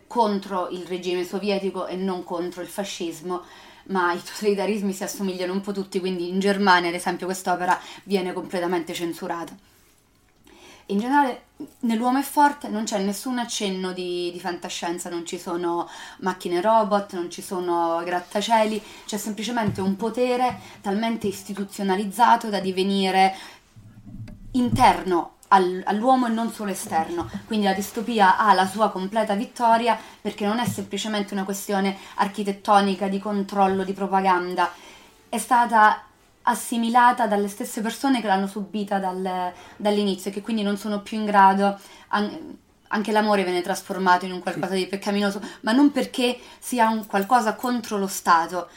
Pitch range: 180-215 Hz